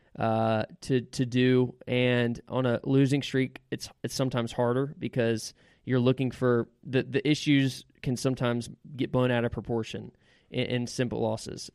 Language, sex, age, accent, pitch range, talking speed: English, male, 20-39, American, 120-135 Hz, 160 wpm